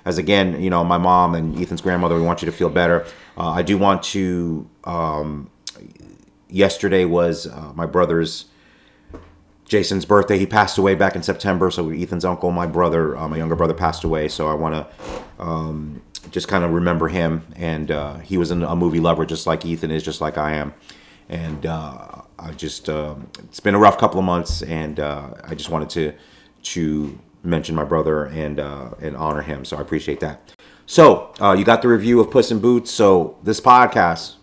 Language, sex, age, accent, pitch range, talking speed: English, male, 30-49, American, 80-95 Hz, 195 wpm